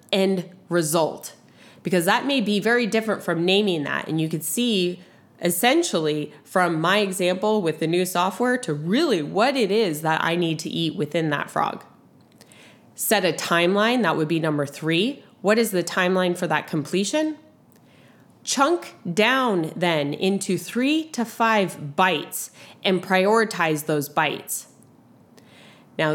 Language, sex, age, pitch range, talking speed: English, female, 20-39, 165-215 Hz, 145 wpm